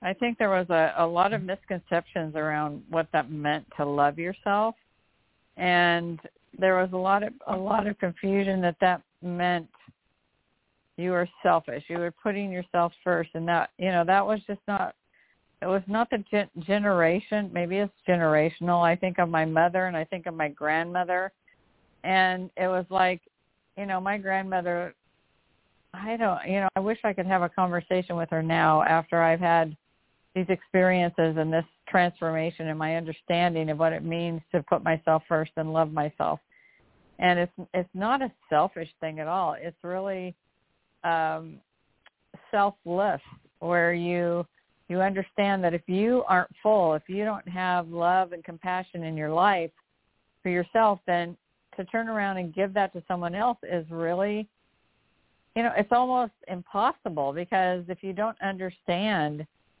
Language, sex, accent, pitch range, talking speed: English, female, American, 165-195 Hz, 165 wpm